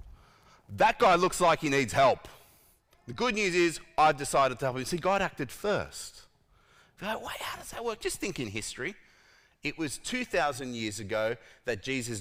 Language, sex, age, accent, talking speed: English, male, 30-49, Australian, 175 wpm